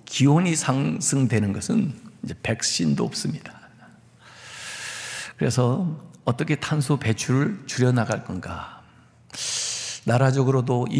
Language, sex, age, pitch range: Korean, male, 60-79, 110-140 Hz